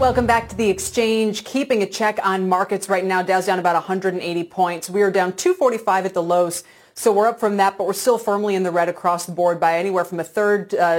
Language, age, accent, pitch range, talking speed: English, 30-49, American, 175-220 Hz, 245 wpm